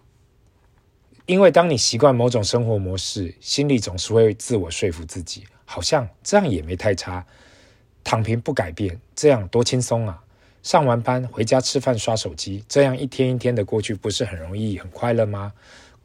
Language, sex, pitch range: Chinese, male, 90-125 Hz